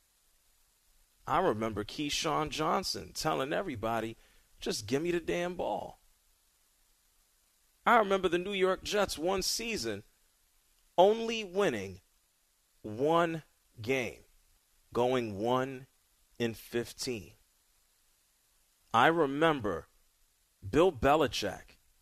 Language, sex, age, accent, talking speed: English, male, 40-59, American, 85 wpm